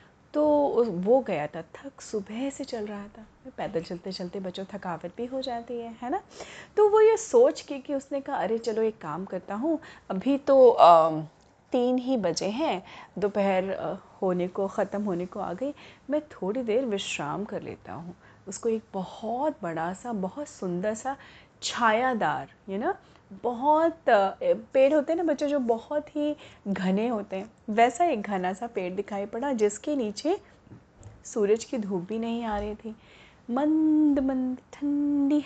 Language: Hindi